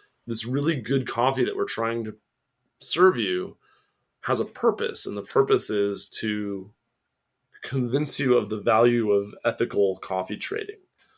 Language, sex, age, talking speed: English, male, 20-39, 145 wpm